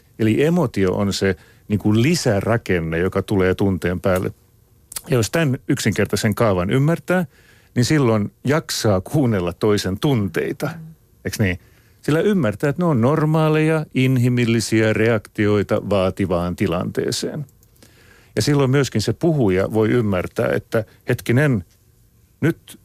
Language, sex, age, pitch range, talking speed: Finnish, male, 50-69, 95-125 Hz, 110 wpm